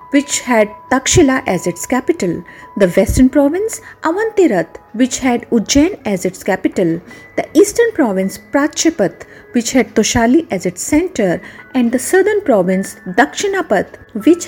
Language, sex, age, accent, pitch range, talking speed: English, female, 50-69, Indian, 195-310 Hz, 135 wpm